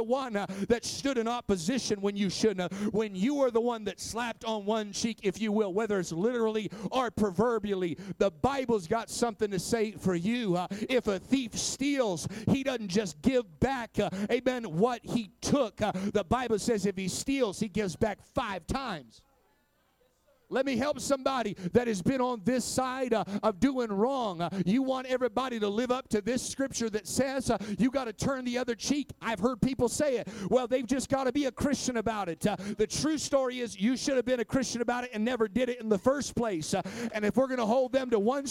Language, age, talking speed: English, 50-69, 225 wpm